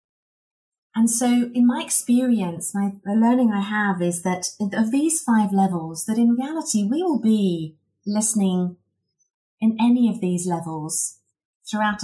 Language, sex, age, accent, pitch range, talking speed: English, female, 30-49, British, 175-220 Hz, 140 wpm